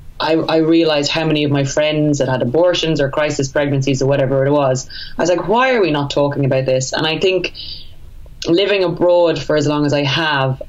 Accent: Irish